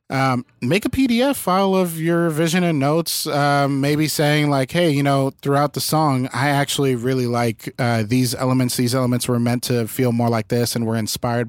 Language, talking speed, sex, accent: English, 205 wpm, male, American